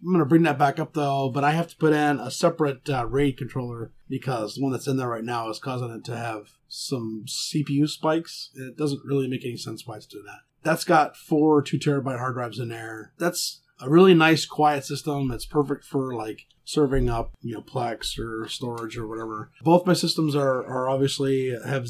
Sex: male